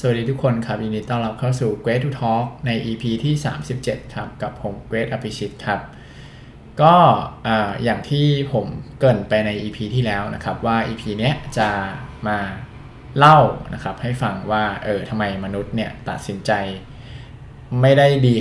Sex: male